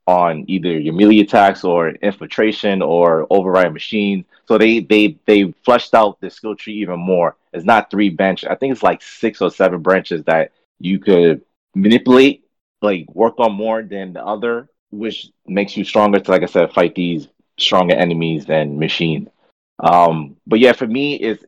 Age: 30-49